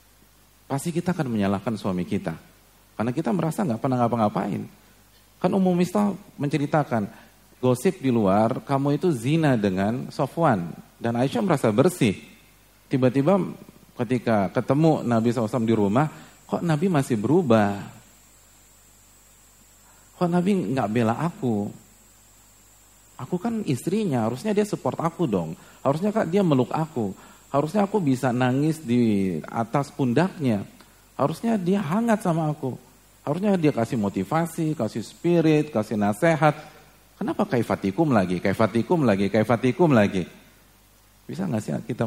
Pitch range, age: 105-160 Hz, 40-59